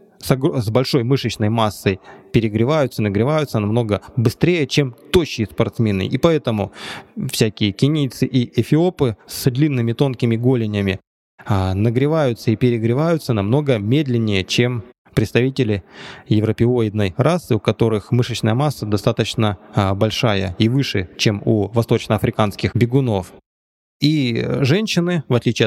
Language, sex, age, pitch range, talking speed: Russian, male, 20-39, 105-130 Hz, 110 wpm